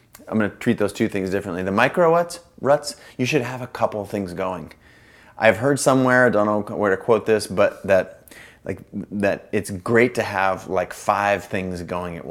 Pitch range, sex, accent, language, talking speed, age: 100-120 Hz, male, American, English, 205 wpm, 30-49